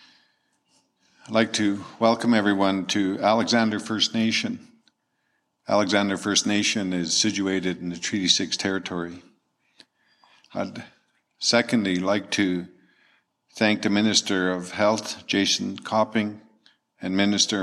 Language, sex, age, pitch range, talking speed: English, male, 50-69, 95-110 Hz, 110 wpm